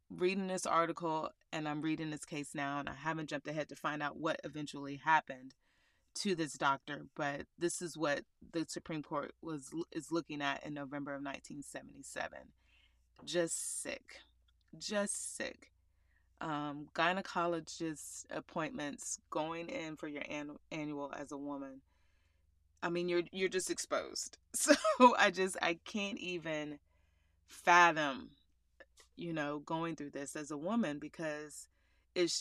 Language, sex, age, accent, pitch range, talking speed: English, female, 30-49, American, 145-175 Hz, 140 wpm